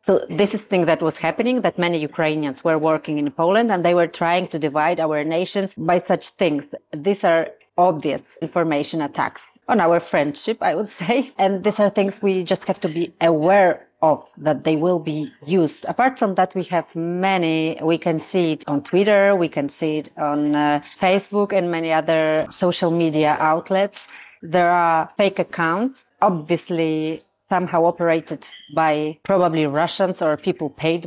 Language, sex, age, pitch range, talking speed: Ukrainian, female, 30-49, 160-190 Hz, 175 wpm